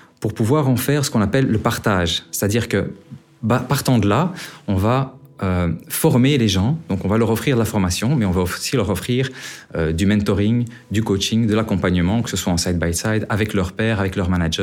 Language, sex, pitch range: Dutch, male, 95-125 Hz